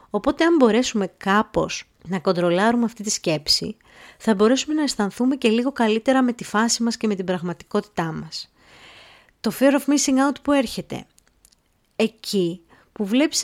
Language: Greek